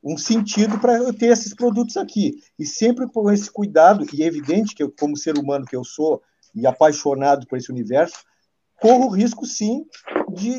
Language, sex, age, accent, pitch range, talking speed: Portuguese, male, 50-69, Brazilian, 155-220 Hz, 195 wpm